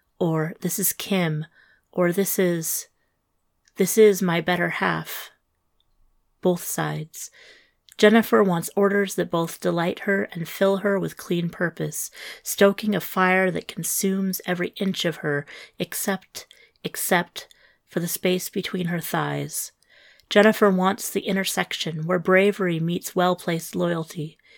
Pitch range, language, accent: 165-200 Hz, English, American